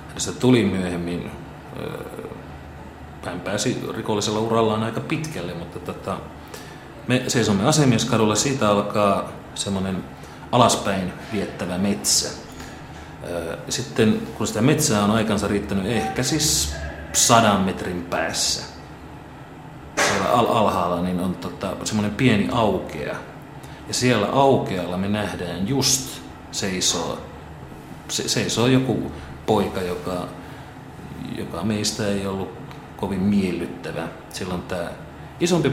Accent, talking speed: native, 90 wpm